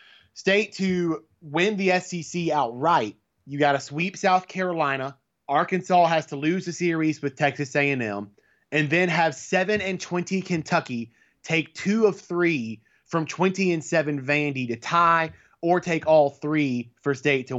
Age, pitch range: 20-39, 130-165 Hz